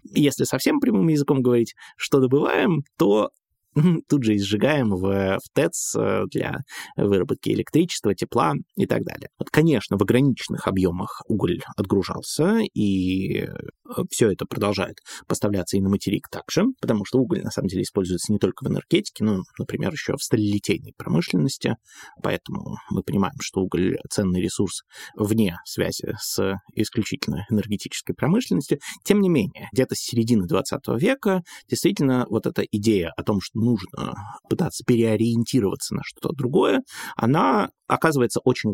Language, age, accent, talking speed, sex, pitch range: Russian, 20-39, native, 145 wpm, male, 100-135 Hz